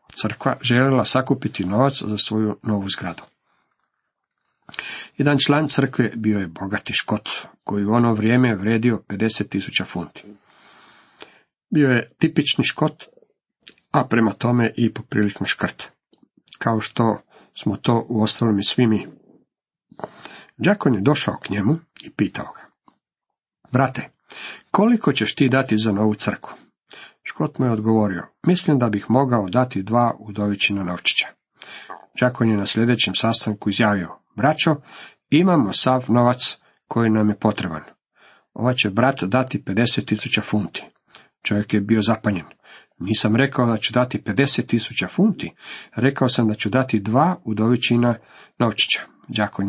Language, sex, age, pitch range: Croatian, male, 50-69, 105-130 Hz